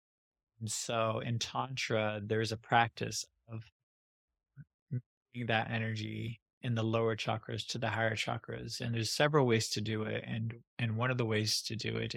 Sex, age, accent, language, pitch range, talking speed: male, 20-39, American, English, 110-125 Hz, 170 wpm